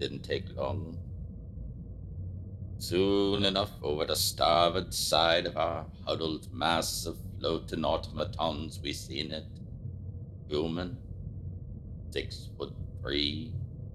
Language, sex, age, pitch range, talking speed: English, male, 60-79, 85-110 Hz, 100 wpm